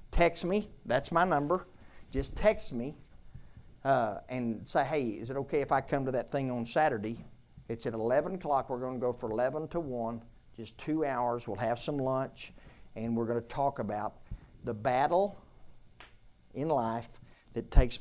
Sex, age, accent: male, 50-69, American